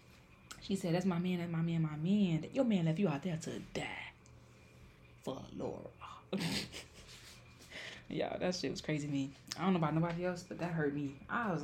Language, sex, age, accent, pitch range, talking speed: English, female, 20-39, American, 135-200 Hz, 200 wpm